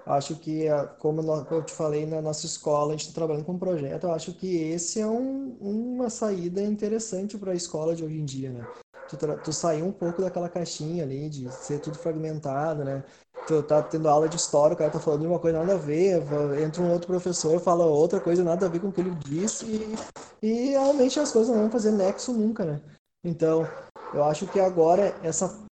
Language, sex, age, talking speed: Portuguese, male, 20-39, 220 wpm